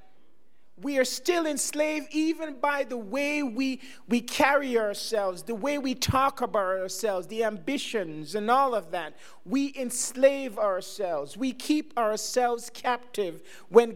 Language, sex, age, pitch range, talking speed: English, male, 40-59, 210-265 Hz, 140 wpm